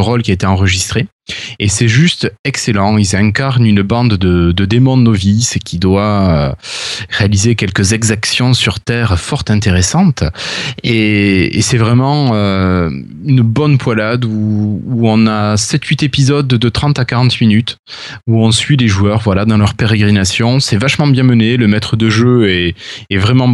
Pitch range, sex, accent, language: 105-125 Hz, male, French, French